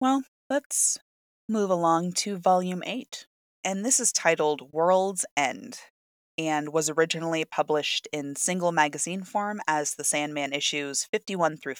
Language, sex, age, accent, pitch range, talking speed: English, female, 20-39, American, 150-185 Hz, 135 wpm